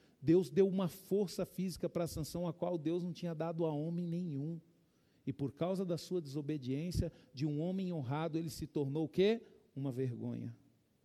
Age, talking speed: 50-69, 185 wpm